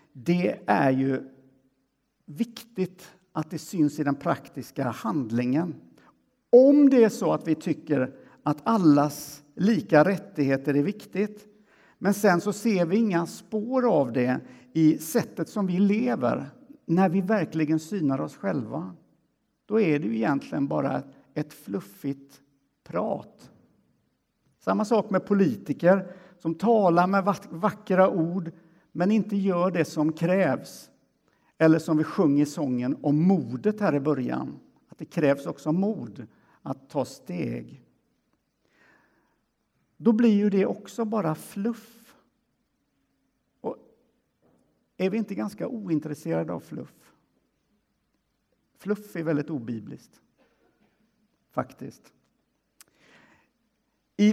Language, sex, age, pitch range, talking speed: Swedish, male, 60-79, 150-210 Hz, 120 wpm